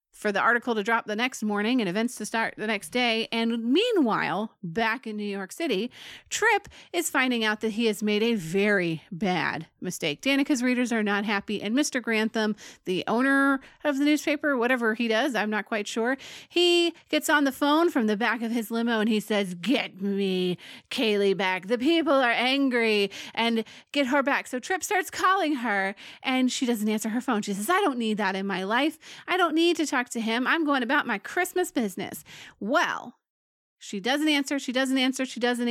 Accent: American